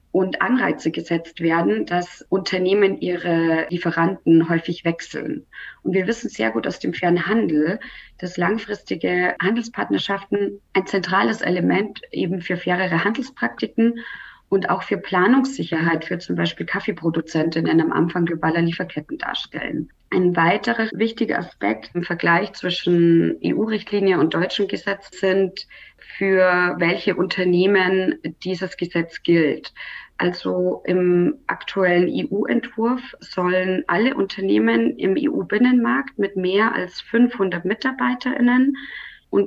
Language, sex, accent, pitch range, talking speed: German, female, German, 170-215 Hz, 115 wpm